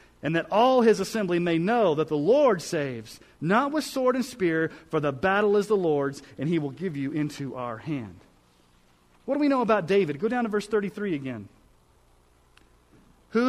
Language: English